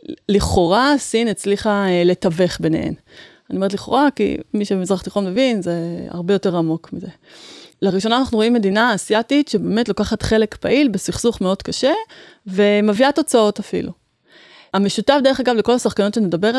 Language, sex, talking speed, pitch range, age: Hebrew, female, 140 wpm, 200-270 Hz, 30-49